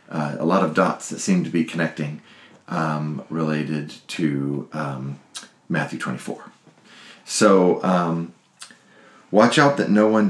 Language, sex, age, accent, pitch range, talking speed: English, male, 40-59, American, 80-90 Hz, 135 wpm